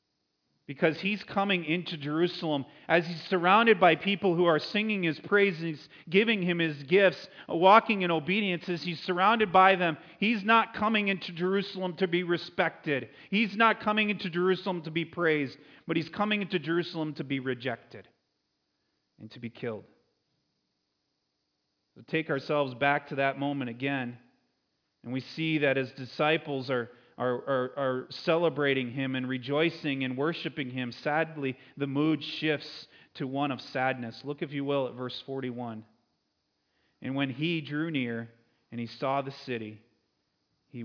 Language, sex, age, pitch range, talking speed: English, male, 40-59, 130-170 Hz, 155 wpm